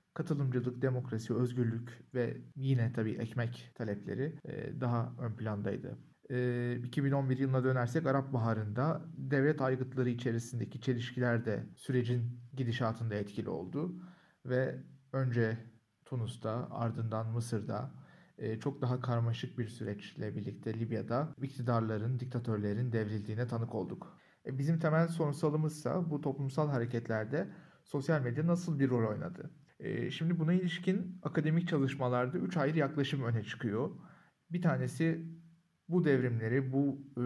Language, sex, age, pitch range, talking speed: Turkish, male, 40-59, 120-155 Hz, 110 wpm